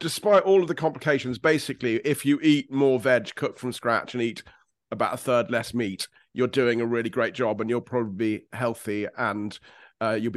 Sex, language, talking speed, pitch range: male, English, 205 wpm, 120-150 Hz